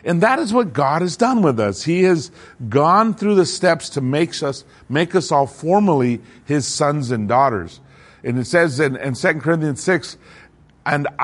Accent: American